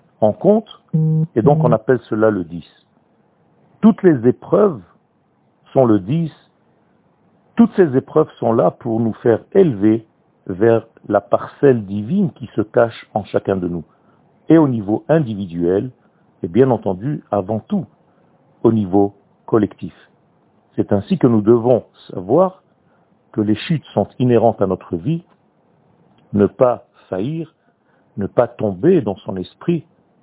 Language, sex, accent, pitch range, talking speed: French, male, French, 100-150 Hz, 140 wpm